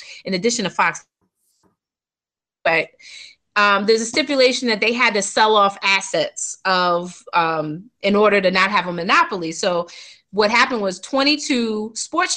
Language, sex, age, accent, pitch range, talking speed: English, female, 30-49, American, 190-255 Hz, 145 wpm